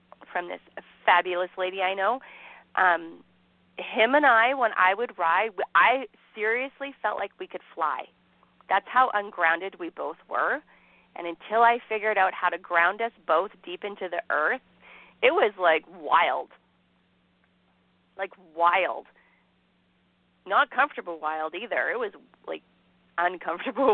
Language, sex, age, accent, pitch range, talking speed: English, female, 40-59, American, 165-220 Hz, 140 wpm